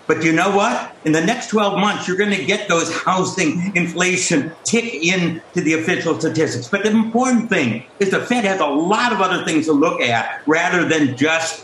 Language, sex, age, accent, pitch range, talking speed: English, male, 60-79, American, 150-195 Hz, 210 wpm